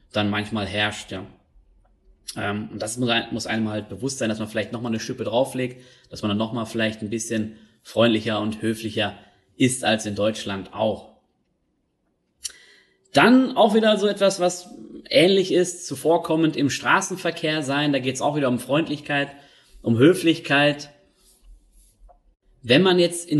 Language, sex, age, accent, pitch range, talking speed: German, male, 20-39, German, 115-155 Hz, 150 wpm